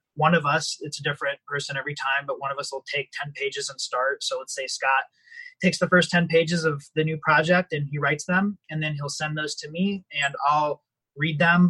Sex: male